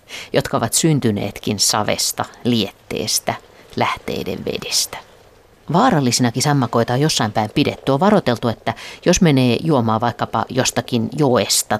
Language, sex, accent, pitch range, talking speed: Finnish, female, native, 110-140 Hz, 110 wpm